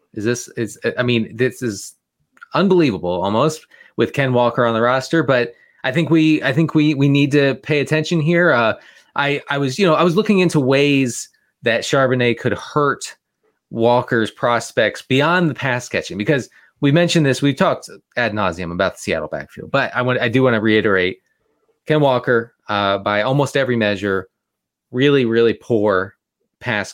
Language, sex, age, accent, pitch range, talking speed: English, male, 30-49, American, 110-150 Hz, 180 wpm